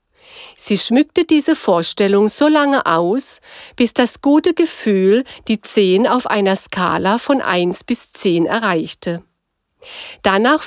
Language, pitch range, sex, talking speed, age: German, 195-275 Hz, female, 125 wpm, 50-69